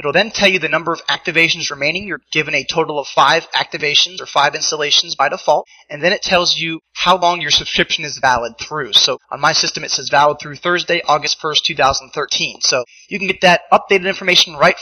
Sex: male